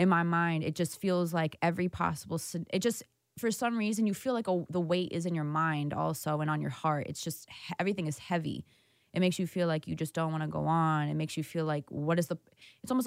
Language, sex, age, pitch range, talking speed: English, female, 20-39, 155-175 Hz, 270 wpm